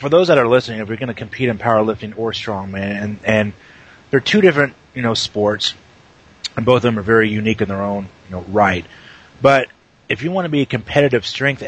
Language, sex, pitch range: English, male, 100-125 Hz